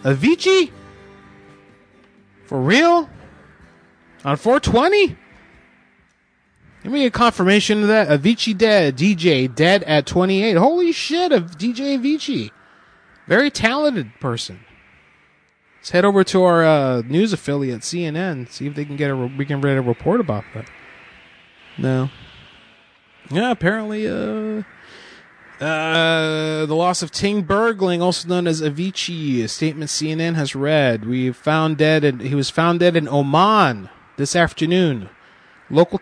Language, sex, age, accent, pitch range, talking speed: English, male, 30-49, American, 145-200 Hz, 135 wpm